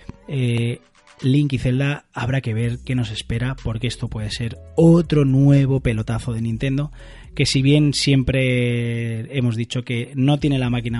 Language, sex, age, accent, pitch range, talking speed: Spanish, male, 20-39, Spanish, 120-145 Hz, 165 wpm